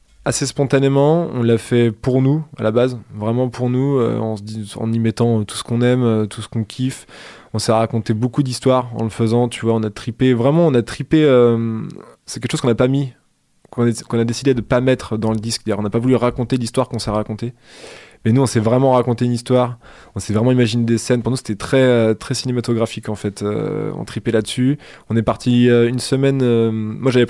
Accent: French